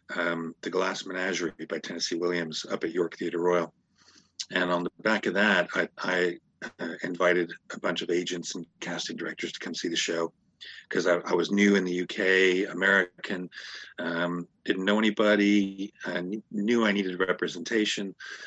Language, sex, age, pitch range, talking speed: English, male, 40-59, 90-100 Hz, 165 wpm